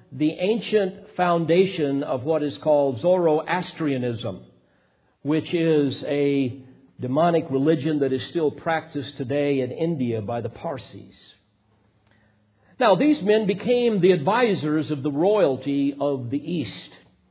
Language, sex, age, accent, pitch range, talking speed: English, male, 50-69, American, 125-165 Hz, 120 wpm